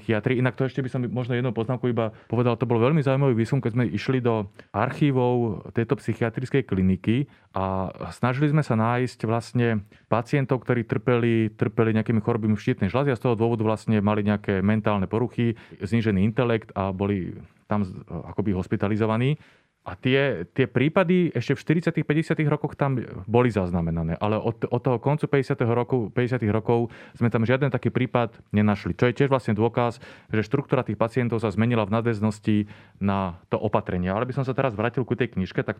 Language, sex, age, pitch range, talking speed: Slovak, male, 30-49, 105-125 Hz, 175 wpm